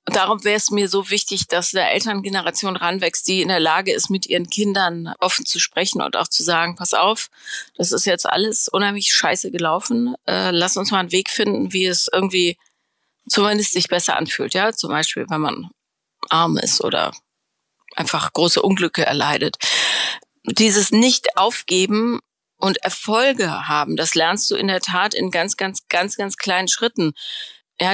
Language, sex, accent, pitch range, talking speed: German, female, German, 175-205 Hz, 175 wpm